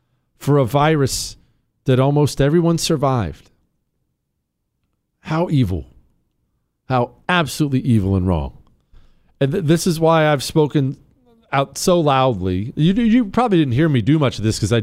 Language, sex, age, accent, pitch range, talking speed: English, male, 40-59, American, 110-155 Hz, 140 wpm